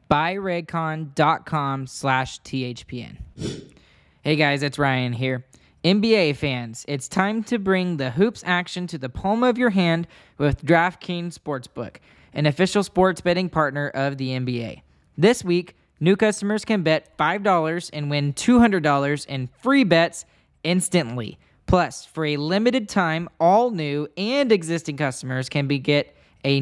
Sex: male